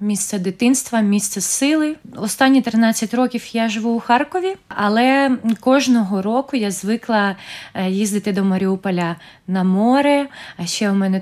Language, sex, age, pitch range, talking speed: Ukrainian, female, 20-39, 190-240 Hz, 135 wpm